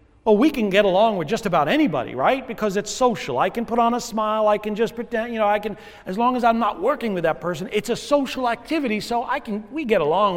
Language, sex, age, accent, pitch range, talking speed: English, male, 40-59, American, 140-220 Hz, 265 wpm